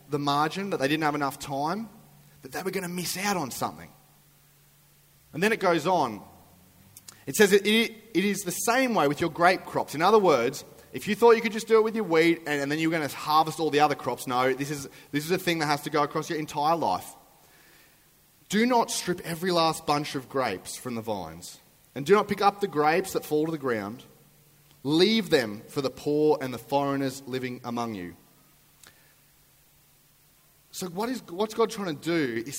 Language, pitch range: English, 145-200 Hz